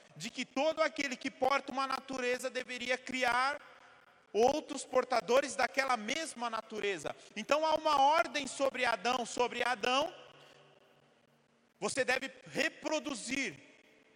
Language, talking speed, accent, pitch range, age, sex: Portuguese, 110 wpm, Brazilian, 200-275 Hz, 40-59, male